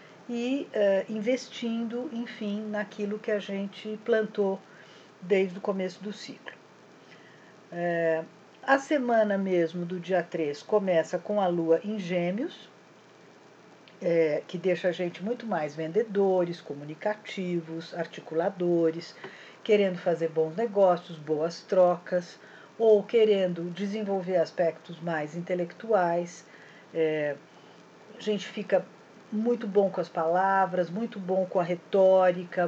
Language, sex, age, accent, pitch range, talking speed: Portuguese, female, 50-69, Brazilian, 175-220 Hz, 110 wpm